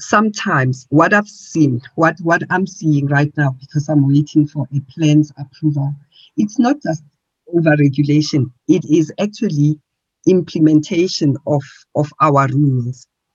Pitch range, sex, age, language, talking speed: 145-190 Hz, female, 50-69, English, 130 wpm